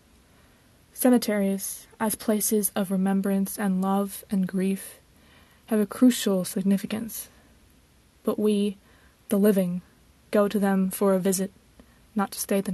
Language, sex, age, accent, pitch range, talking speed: English, female, 20-39, American, 195-215 Hz, 125 wpm